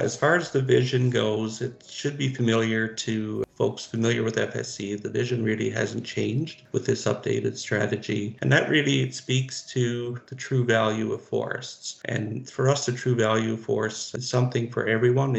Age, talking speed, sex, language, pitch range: 50-69, 180 wpm, male, English, 105-120 Hz